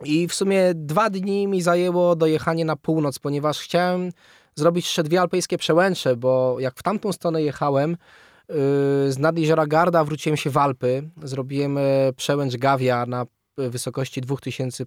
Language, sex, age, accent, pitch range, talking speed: Polish, male, 20-39, native, 140-175 Hz, 155 wpm